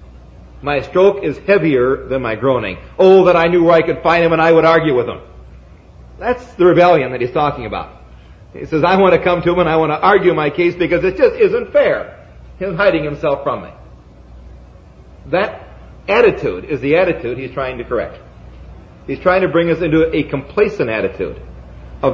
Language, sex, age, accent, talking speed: English, male, 50-69, American, 200 wpm